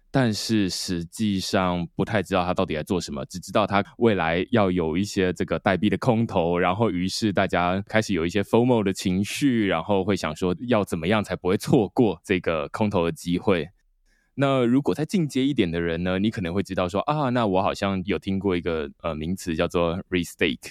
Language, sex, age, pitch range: Chinese, male, 20-39, 85-110 Hz